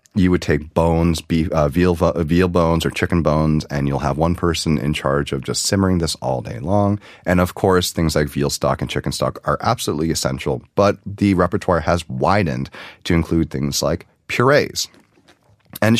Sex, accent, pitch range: male, American, 75-100 Hz